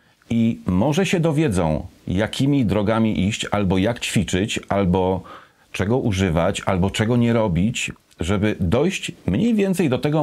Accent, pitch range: native, 100-125 Hz